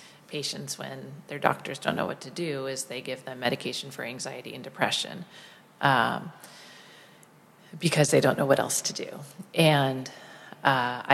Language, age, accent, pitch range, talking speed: English, 40-59, American, 135-165 Hz, 155 wpm